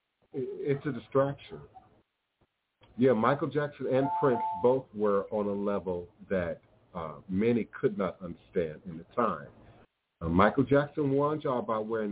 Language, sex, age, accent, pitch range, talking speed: English, male, 50-69, American, 100-140 Hz, 145 wpm